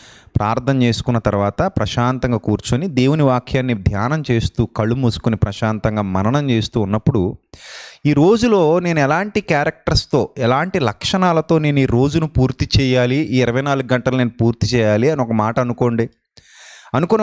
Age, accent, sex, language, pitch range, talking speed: 30-49, native, male, Telugu, 110-155 Hz, 130 wpm